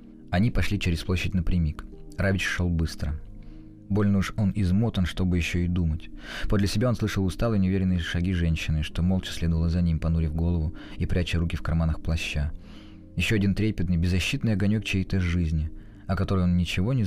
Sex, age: male, 20-39